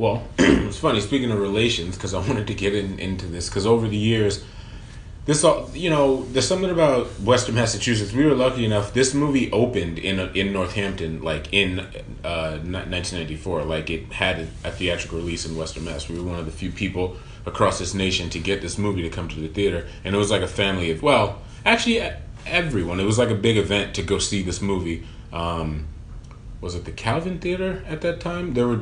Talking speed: 210 wpm